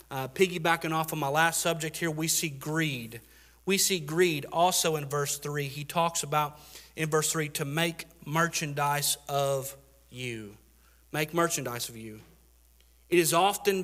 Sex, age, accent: male, 40-59, American